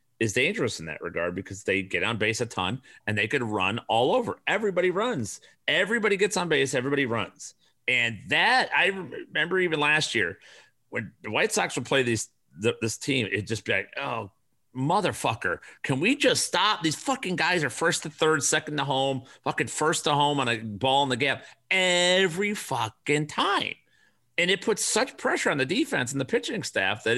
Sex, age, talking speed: male, 40-59, 195 wpm